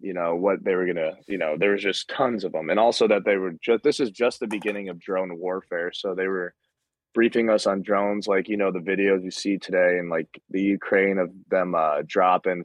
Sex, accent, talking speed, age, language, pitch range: male, American, 245 wpm, 20-39, English, 90-100 Hz